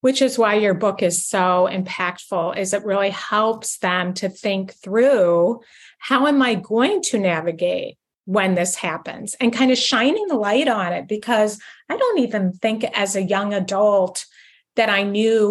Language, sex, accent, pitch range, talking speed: English, female, American, 195-245 Hz, 175 wpm